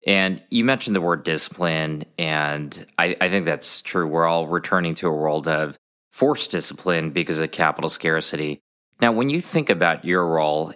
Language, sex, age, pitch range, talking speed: English, male, 20-39, 80-95 Hz, 180 wpm